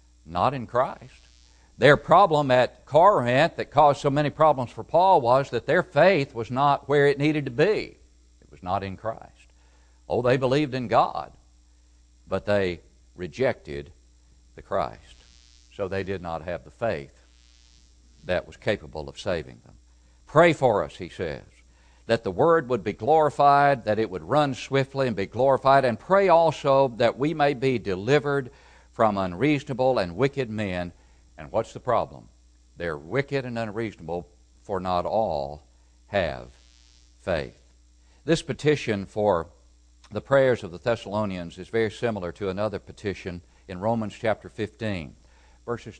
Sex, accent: male, American